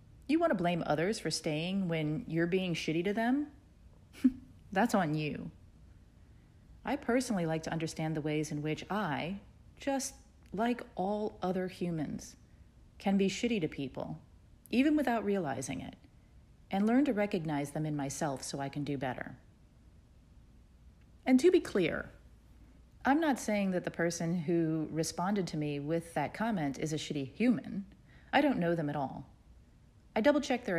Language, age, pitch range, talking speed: English, 40-59, 150-220 Hz, 160 wpm